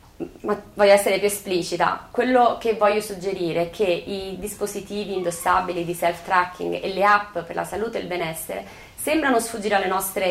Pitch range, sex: 175-215 Hz, female